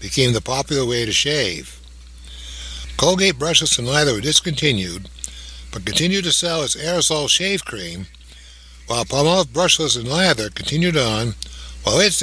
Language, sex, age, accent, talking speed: English, male, 60-79, American, 140 wpm